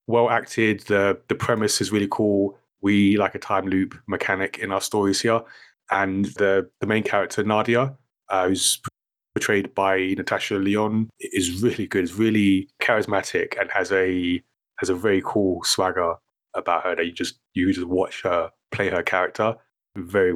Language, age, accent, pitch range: English, 30-49, British, 95-115 Hz